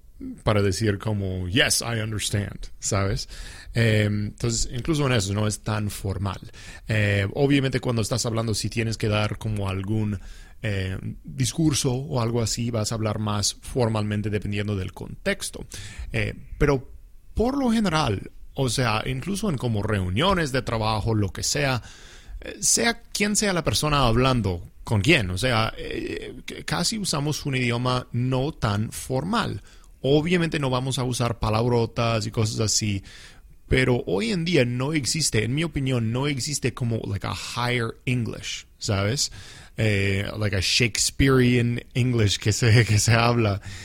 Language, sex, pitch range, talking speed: English, male, 100-130 Hz, 150 wpm